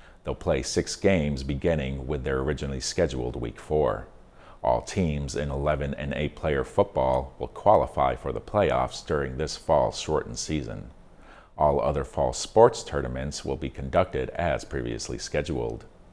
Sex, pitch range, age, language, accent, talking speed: male, 65-80 Hz, 40-59, English, American, 150 wpm